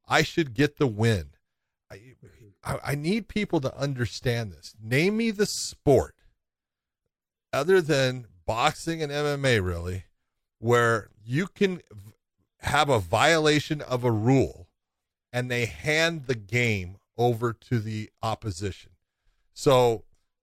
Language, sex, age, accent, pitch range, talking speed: English, male, 40-59, American, 105-155 Hz, 120 wpm